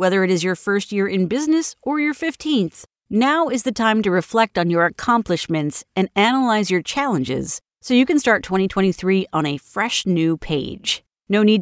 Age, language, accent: 40-59, English, American